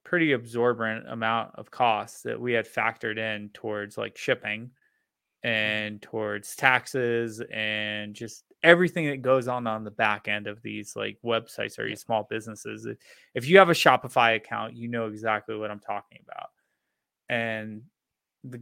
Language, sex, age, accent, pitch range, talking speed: English, male, 20-39, American, 110-125 Hz, 160 wpm